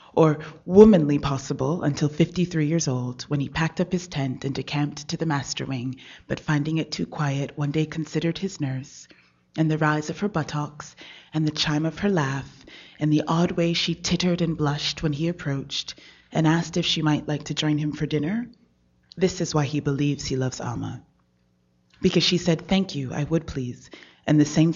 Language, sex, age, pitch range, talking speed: English, female, 30-49, 140-160 Hz, 200 wpm